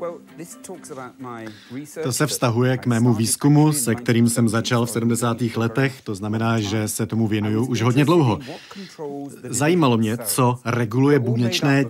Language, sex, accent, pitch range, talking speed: Czech, male, native, 120-140 Hz, 135 wpm